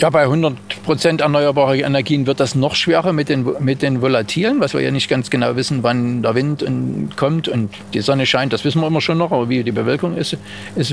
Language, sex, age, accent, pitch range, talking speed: German, male, 40-59, German, 120-150 Hz, 220 wpm